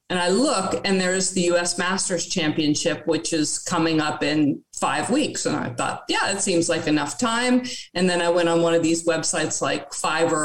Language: English